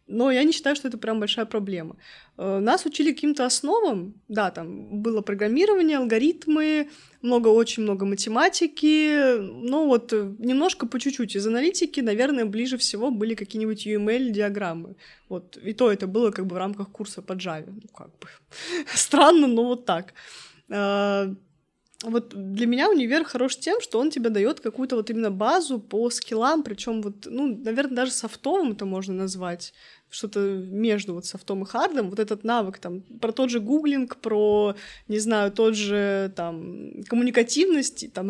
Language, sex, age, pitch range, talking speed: Russian, female, 20-39, 205-260 Hz, 155 wpm